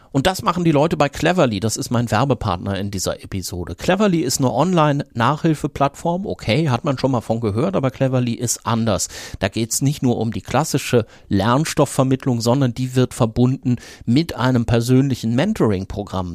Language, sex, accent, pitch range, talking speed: German, male, German, 115-145 Hz, 175 wpm